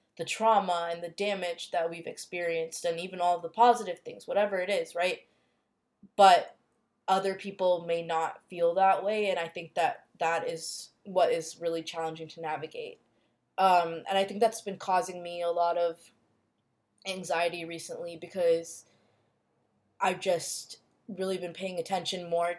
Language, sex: English, female